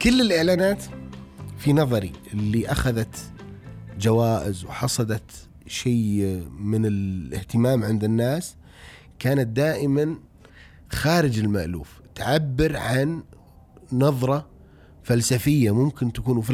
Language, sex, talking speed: Arabic, male, 85 wpm